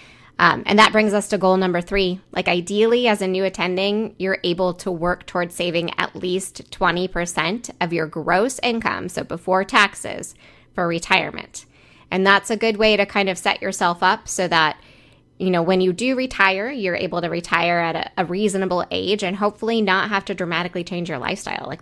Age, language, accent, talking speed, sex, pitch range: 20-39, English, American, 195 wpm, female, 175-205 Hz